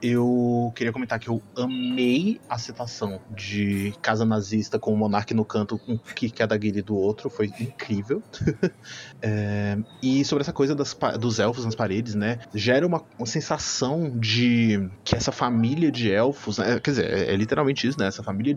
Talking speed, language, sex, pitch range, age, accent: 175 wpm, Portuguese, male, 110-150 Hz, 20-39, Brazilian